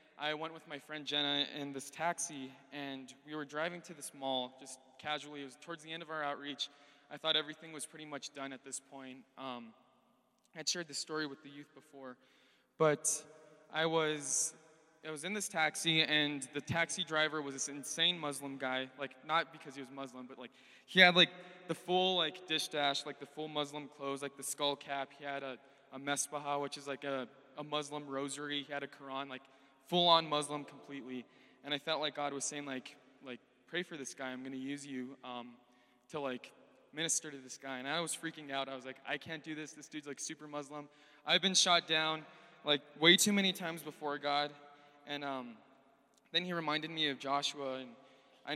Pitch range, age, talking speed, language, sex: 135-155 Hz, 20-39, 210 wpm, English, male